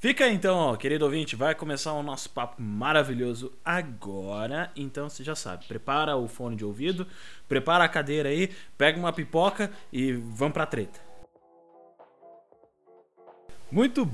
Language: Portuguese